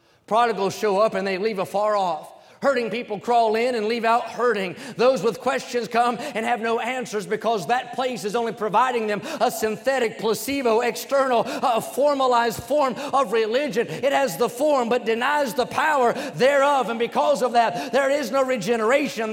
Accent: American